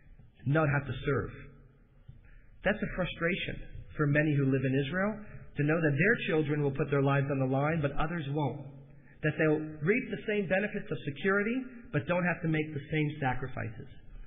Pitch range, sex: 135-175 Hz, male